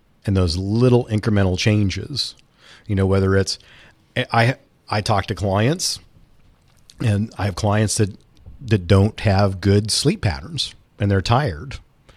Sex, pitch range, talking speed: male, 95-110 Hz, 140 wpm